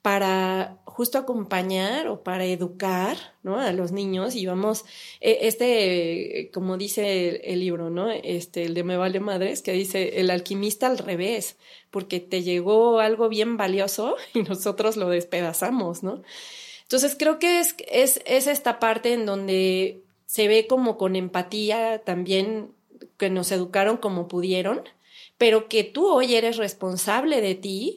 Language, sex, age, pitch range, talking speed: Spanish, female, 30-49, 185-215 Hz, 150 wpm